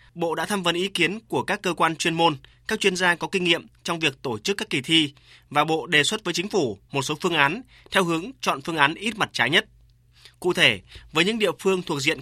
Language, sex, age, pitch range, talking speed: Vietnamese, male, 20-39, 135-175 Hz, 260 wpm